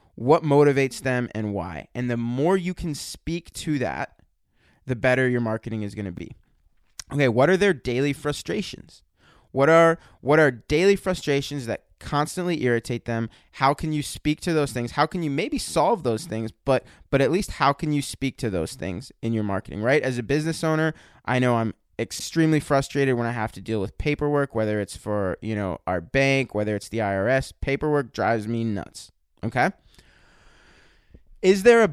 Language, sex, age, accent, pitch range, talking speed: English, male, 20-39, American, 115-150 Hz, 190 wpm